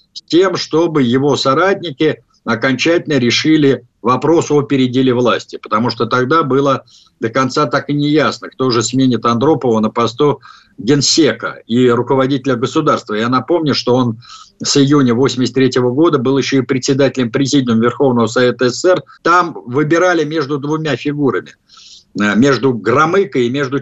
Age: 50-69